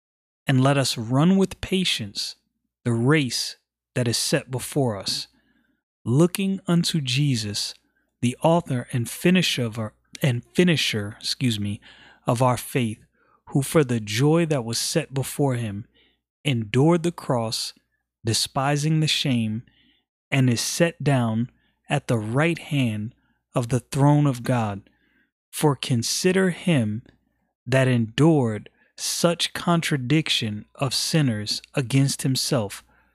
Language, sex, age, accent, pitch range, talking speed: English, male, 30-49, American, 115-155 Hz, 120 wpm